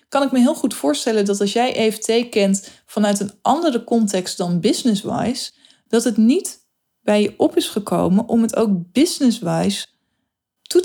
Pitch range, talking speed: 185-230 Hz, 165 wpm